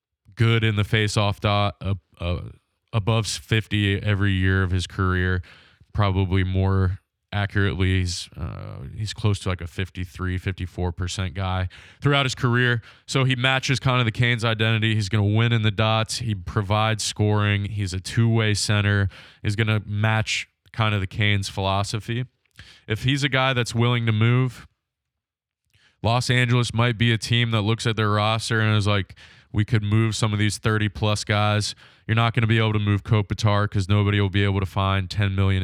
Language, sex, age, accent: English, male, 20-39, American